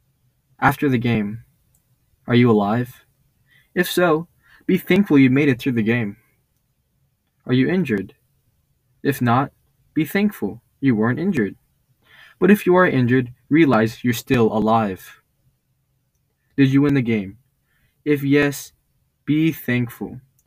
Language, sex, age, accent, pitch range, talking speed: English, male, 20-39, American, 115-140 Hz, 130 wpm